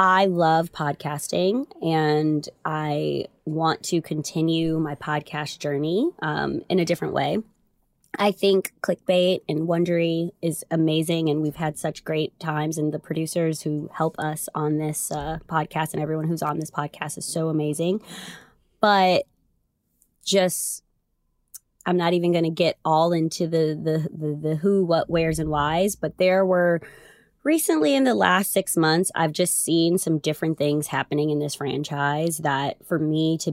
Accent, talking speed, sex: American, 160 wpm, female